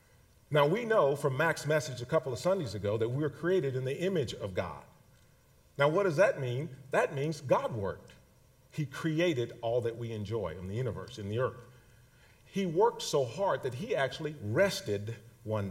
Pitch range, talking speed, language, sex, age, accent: 120-155 Hz, 190 wpm, English, male, 50-69, American